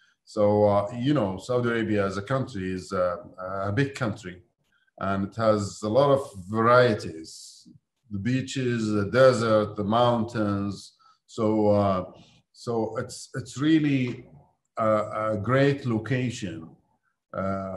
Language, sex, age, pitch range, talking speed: English, male, 50-69, 100-120 Hz, 130 wpm